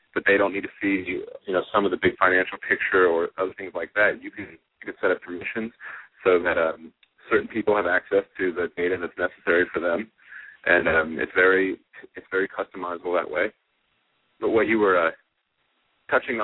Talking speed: 200 wpm